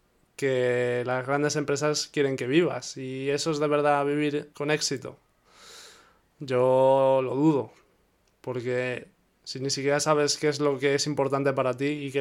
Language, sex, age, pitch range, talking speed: Spanish, male, 20-39, 135-150 Hz, 160 wpm